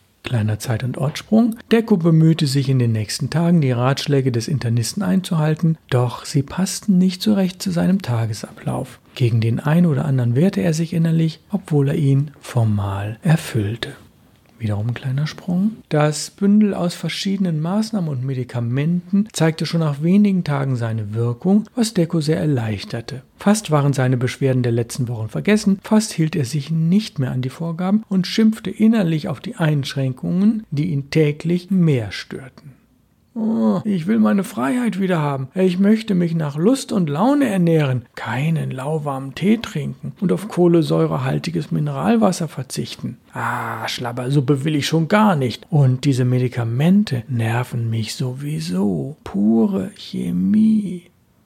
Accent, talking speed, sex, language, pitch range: German, 150 wpm, male, German, 130-185 Hz